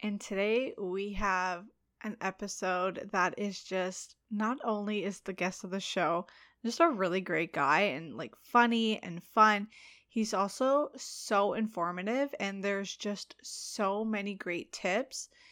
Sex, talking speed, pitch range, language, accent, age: female, 145 wpm, 195-235 Hz, English, American, 20-39